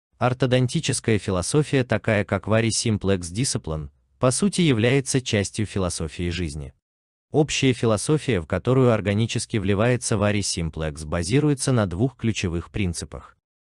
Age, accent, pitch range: 30-49, native, 90-125 Hz